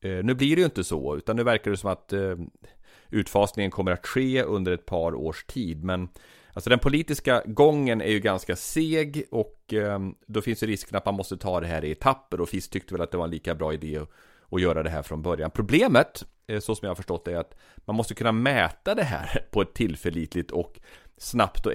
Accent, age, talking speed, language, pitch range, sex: Swedish, 30-49, 235 wpm, English, 85-120 Hz, male